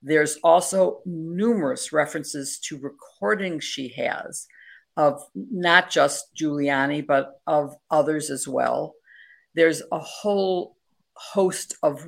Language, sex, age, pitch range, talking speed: English, female, 50-69, 140-165 Hz, 110 wpm